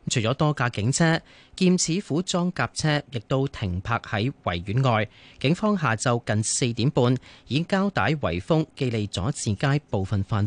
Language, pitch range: Chinese, 105-150 Hz